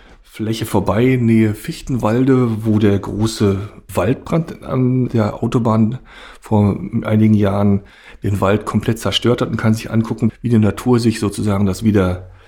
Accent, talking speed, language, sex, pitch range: German, 150 wpm, German, male, 105-125 Hz